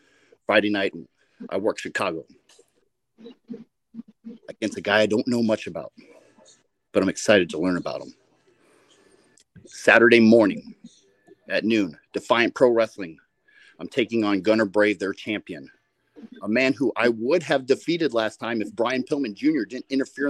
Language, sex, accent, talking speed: English, male, American, 145 wpm